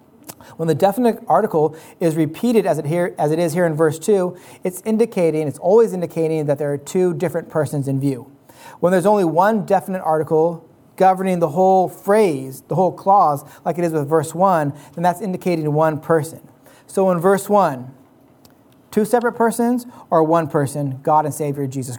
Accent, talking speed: American, 185 wpm